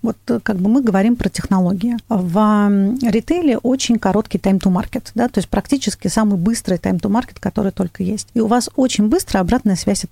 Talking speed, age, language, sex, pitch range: 180 wpm, 40-59, Russian, female, 195-240 Hz